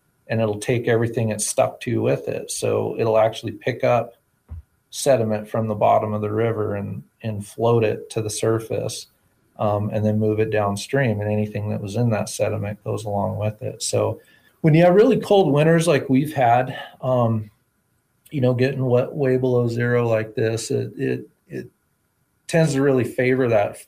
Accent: American